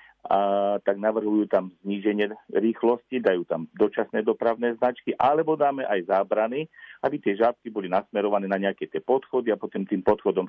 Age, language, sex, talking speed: 40-59, Slovak, male, 160 wpm